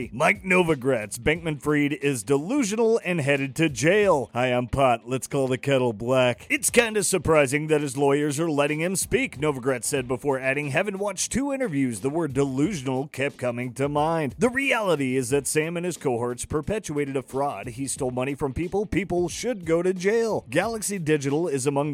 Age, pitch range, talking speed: 30-49, 130-175 Hz, 190 wpm